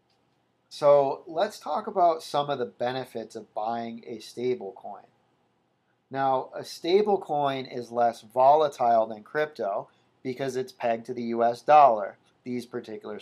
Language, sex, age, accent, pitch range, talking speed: English, male, 40-59, American, 120-135 Hz, 130 wpm